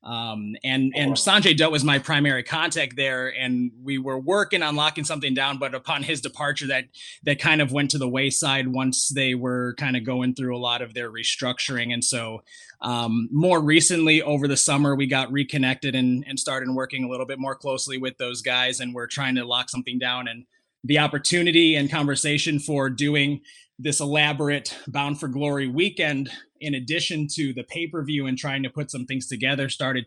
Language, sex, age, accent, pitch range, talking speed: English, male, 20-39, American, 130-155 Hz, 195 wpm